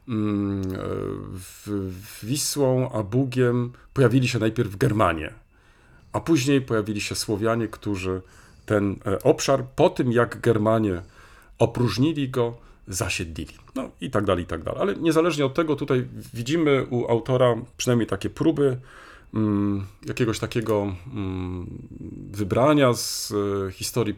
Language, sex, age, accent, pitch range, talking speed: Polish, male, 40-59, native, 100-135 Hz, 115 wpm